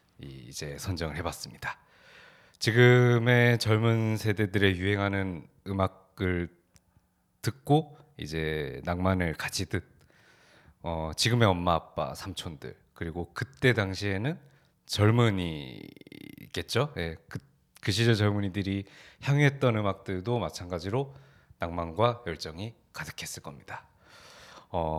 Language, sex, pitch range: Korean, male, 85-110 Hz